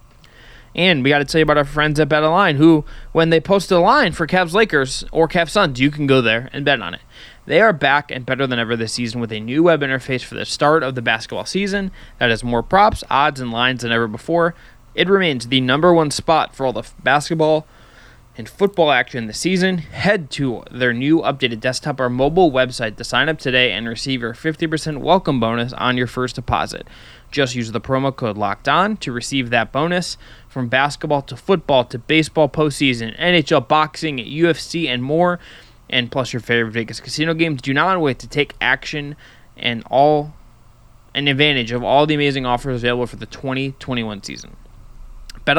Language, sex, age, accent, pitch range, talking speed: English, male, 20-39, American, 120-155 Hz, 195 wpm